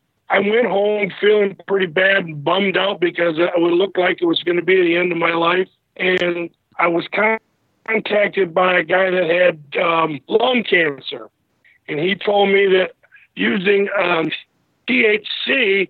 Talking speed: 165 wpm